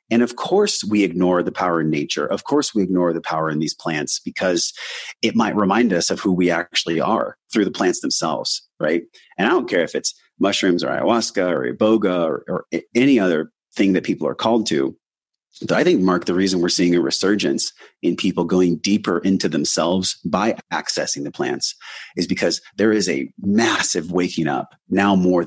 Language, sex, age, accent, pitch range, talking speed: English, male, 30-49, American, 85-110 Hz, 200 wpm